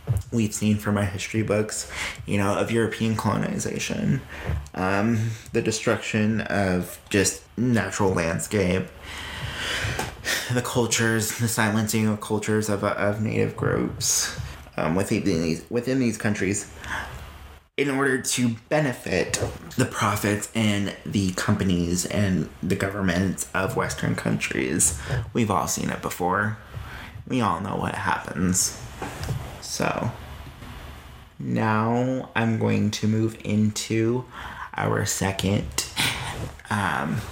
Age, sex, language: 30-49, male, English